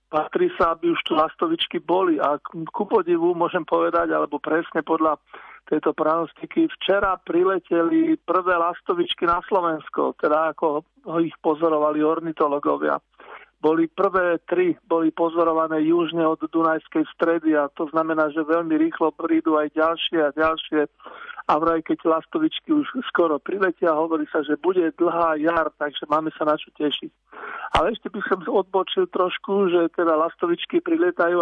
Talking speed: 155 wpm